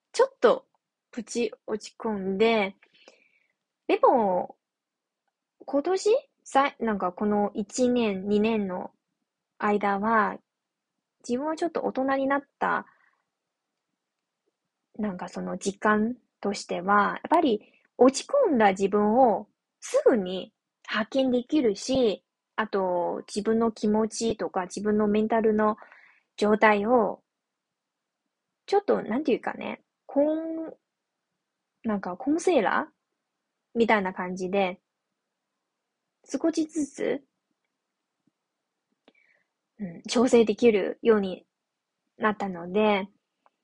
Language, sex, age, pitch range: Japanese, female, 20-39, 200-265 Hz